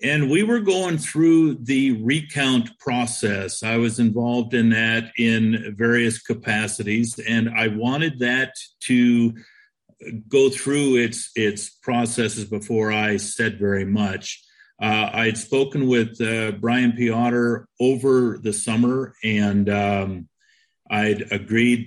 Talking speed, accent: 125 wpm, American